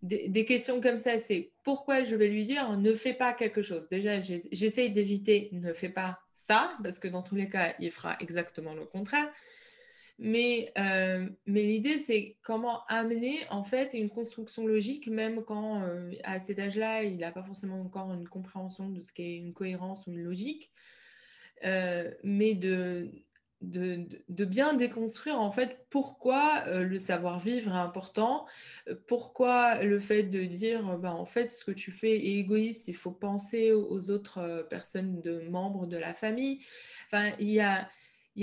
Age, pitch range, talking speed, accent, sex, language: 20-39, 185-230 Hz, 180 wpm, French, female, French